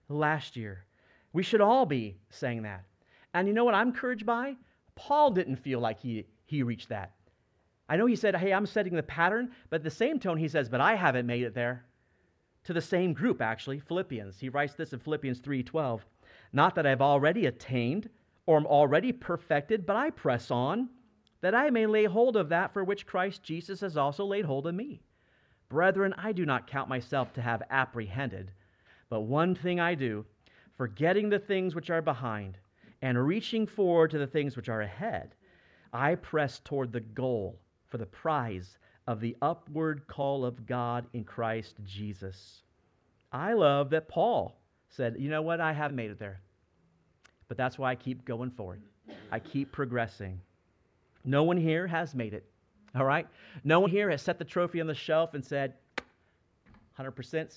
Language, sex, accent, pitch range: English, male, American, 115-175 Hz